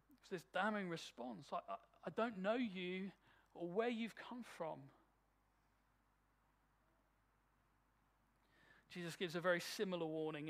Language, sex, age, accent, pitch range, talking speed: English, male, 40-59, British, 170-240 Hz, 115 wpm